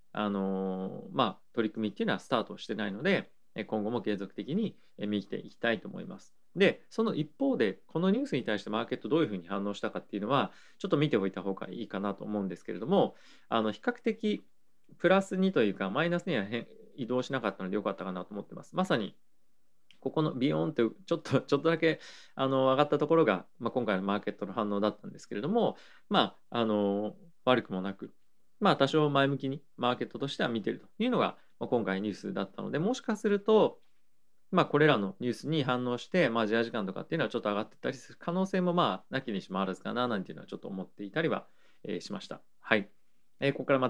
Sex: male